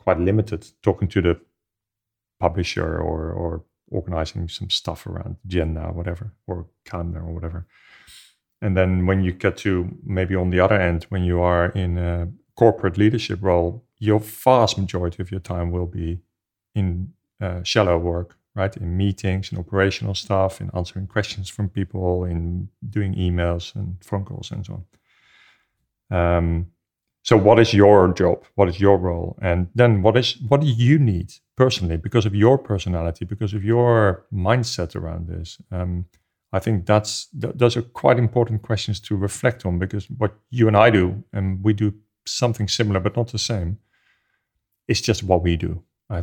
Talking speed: 175 wpm